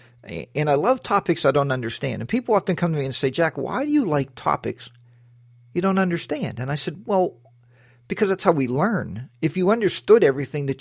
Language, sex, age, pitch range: English, male, 40-59, 120-165 Hz